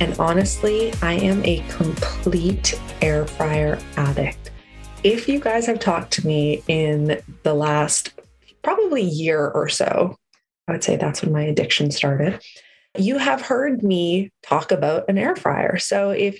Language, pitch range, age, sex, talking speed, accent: English, 155-200 Hz, 20-39, female, 155 wpm, American